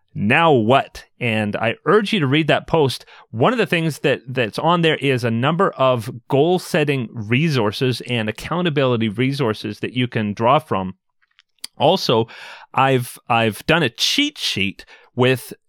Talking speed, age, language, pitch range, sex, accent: 155 wpm, 30-49, English, 110-145 Hz, male, American